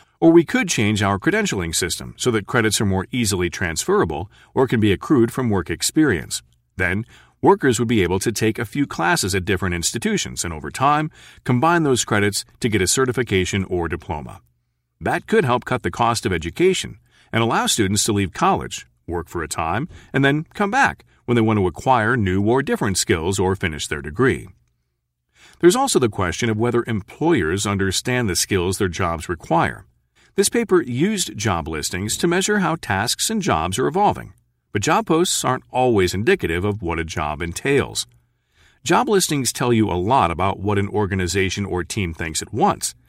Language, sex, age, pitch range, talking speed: English, male, 40-59, 85-125 Hz, 185 wpm